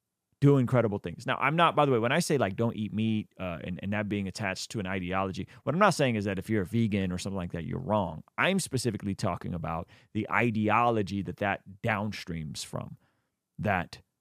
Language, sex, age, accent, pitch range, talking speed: English, male, 30-49, American, 95-120 Hz, 220 wpm